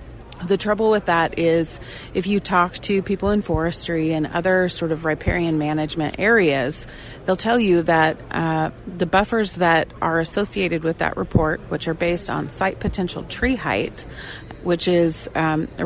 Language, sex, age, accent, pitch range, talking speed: English, female, 30-49, American, 160-190 Hz, 165 wpm